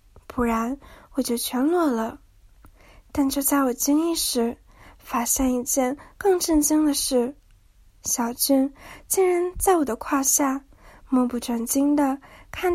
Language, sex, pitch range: Chinese, female, 245-295 Hz